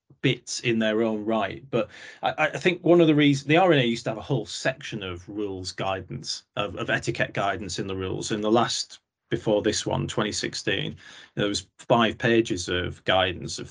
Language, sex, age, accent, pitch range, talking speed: English, male, 30-49, British, 100-125 Hz, 195 wpm